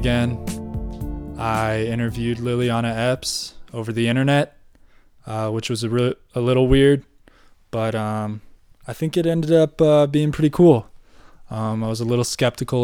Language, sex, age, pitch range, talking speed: English, male, 20-39, 110-125 Hz, 150 wpm